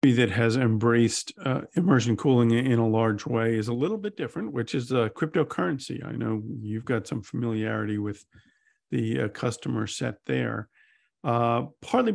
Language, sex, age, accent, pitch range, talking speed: English, male, 50-69, American, 115-135 Hz, 170 wpm